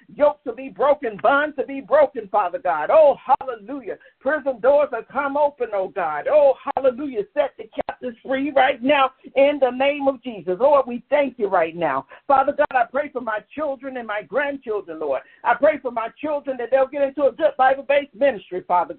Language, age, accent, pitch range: English, 50-69, American, 240-290 Hz